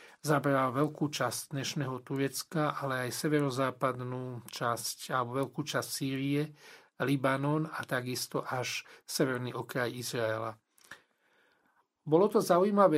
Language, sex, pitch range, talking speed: Slovak, male, 130-160 Hz, 105 wpm